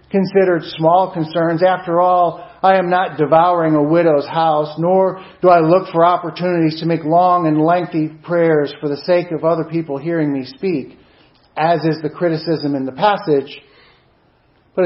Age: 50-69